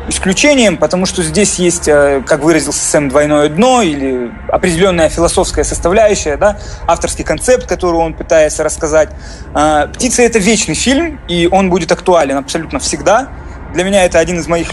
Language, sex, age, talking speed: Russian, male, 20-39, 150 wpm